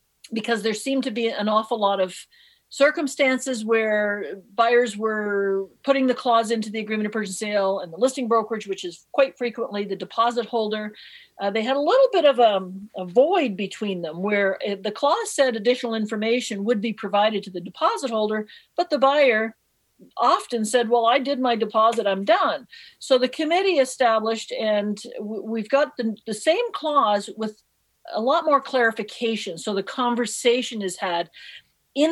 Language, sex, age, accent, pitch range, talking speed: English, female, 50-69, American, 205-255 Hz, 175 wpm